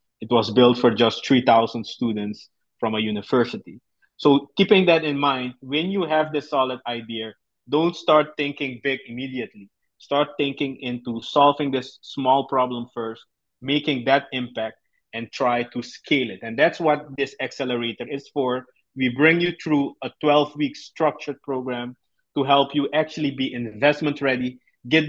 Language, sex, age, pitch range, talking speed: English, male, 20-39, 120-150 Hz, 155 wpm